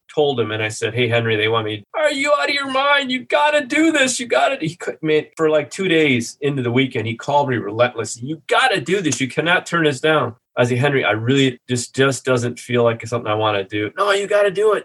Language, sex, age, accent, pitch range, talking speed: English, male, 30-49, American, 115-155 Hz, 285 wpm